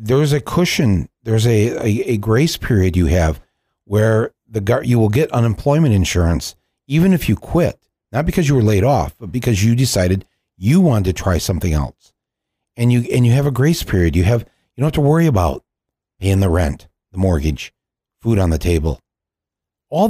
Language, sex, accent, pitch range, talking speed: English, male, American, 90-130 Hz, 190 wpm